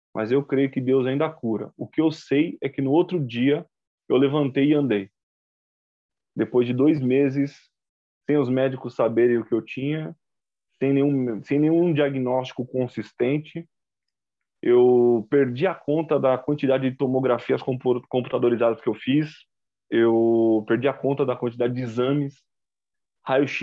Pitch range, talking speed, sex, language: 120-145 Hz, 150 wpm, male, Portuguese